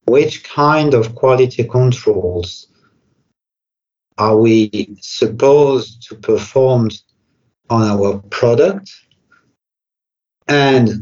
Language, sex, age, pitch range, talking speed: English, male, 50-69, 115-140 Hz, 75 wpm